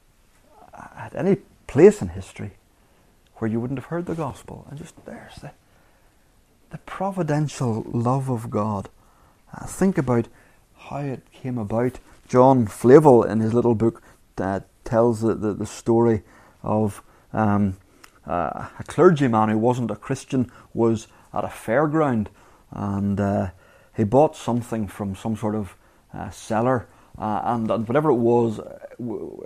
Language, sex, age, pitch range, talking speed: English, male, 30-49, 105-125 Hz, 145 wpm